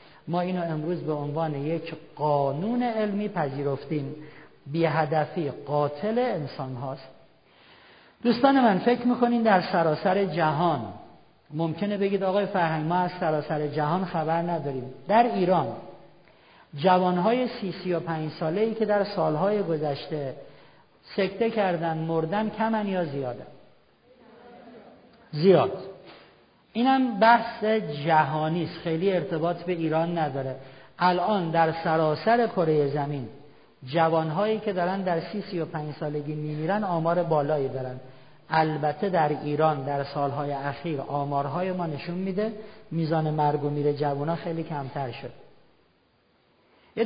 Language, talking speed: Persian, 120 wpm